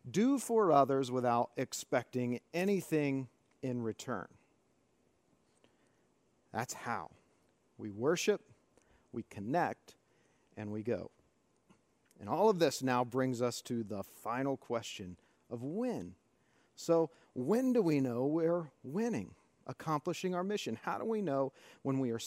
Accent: American